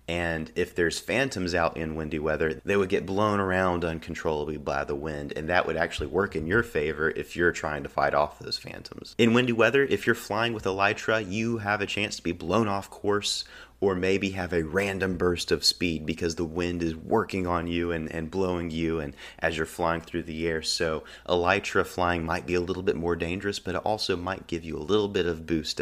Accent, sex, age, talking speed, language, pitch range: American, male, 30-49, 225 wpm, English, 80-100 Hz